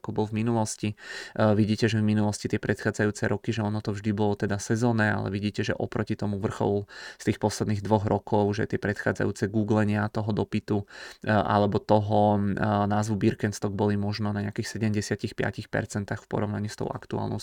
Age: 20-39